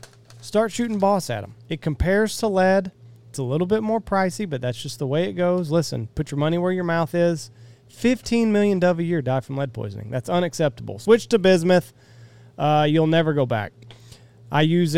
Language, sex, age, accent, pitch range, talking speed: English, male, 30-49, American, 120-175 Hz, 205 wpm